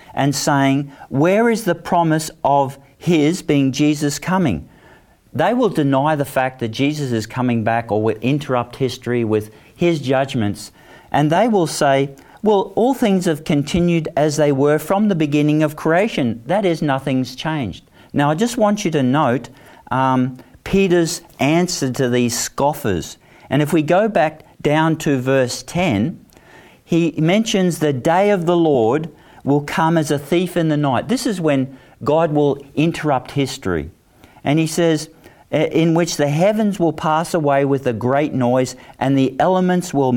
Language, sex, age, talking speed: English, male, 50-69, 165 wpm